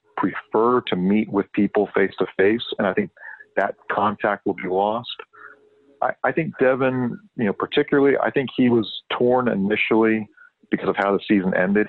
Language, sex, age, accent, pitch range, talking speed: English, male, 40-59, American, 95-125 Hz, 175 wpm